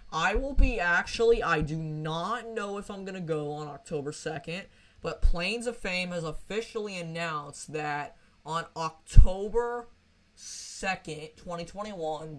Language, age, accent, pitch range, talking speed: English, 20-39, American, 150-175 Hz, 135 wpm